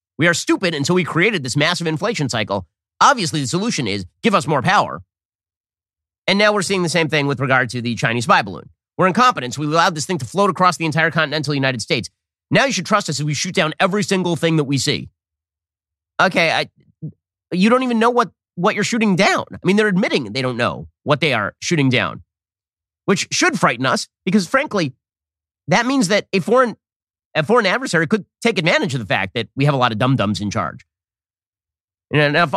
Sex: male